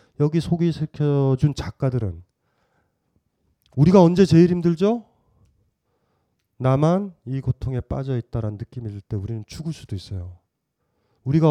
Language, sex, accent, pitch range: Korean, male, native, 115-175 Hz